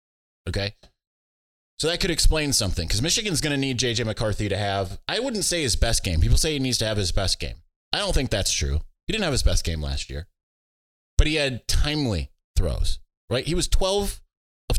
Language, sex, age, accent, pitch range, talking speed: English, male, 20-39, American, 80-115 Hz, 215 wpm